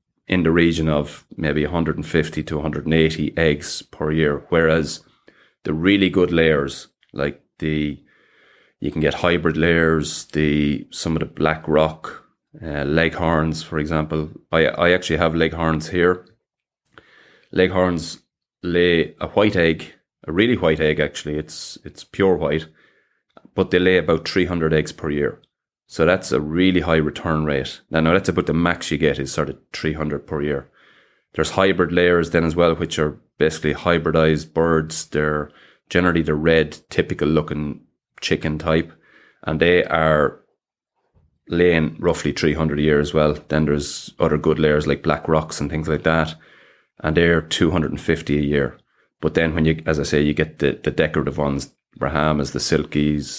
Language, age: English, 30-49